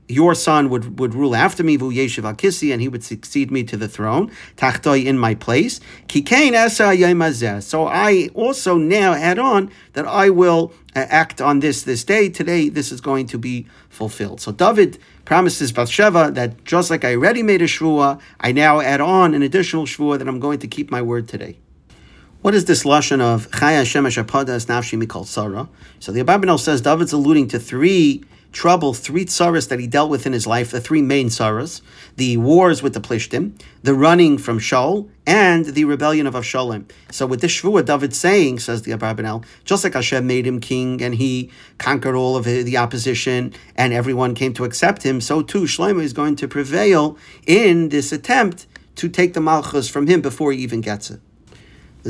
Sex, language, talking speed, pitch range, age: male, English, 185 wpm, 120-160 Hz, 50-69